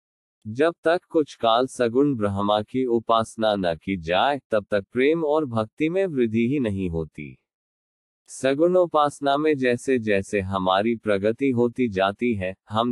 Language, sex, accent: Hindi, male, native